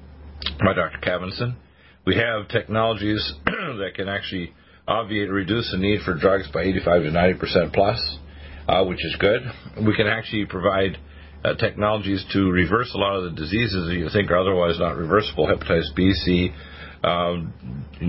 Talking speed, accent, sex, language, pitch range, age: 165 wpm, American, male, English, 80-100 Hz, 50-69